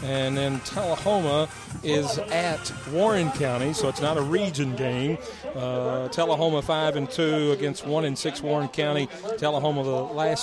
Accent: American